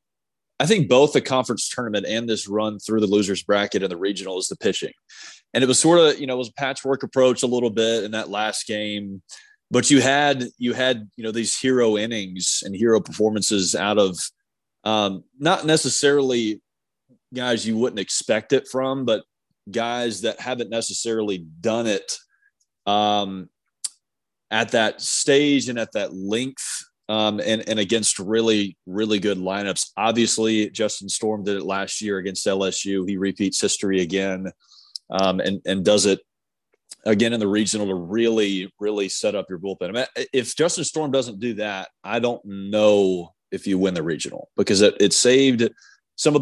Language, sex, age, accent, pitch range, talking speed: English, male, 30-49, American, 100-125 Hz, 175 wpm